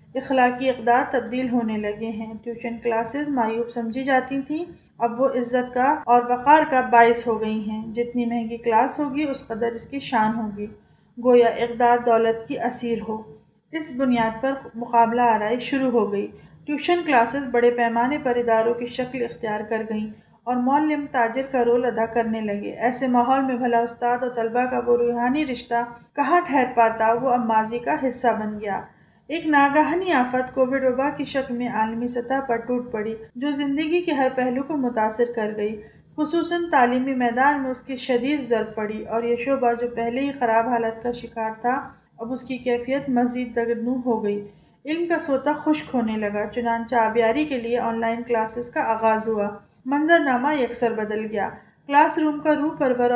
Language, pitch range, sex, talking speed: Urdu, 230-265 Hz, female, 185 wpm